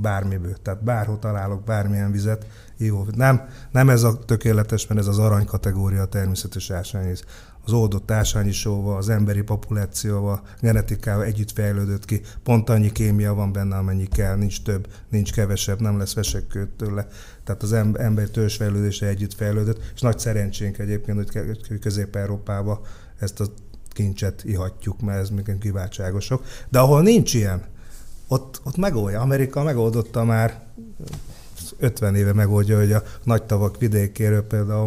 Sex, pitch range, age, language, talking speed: male, 100-115 Hz, 30-49, Hungarian, 140 wpm